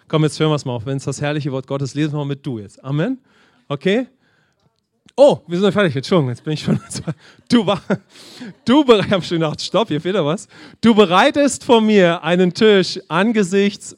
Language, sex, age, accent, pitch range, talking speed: English, male, 30-49, German, 140-200 Hz, 165 wpm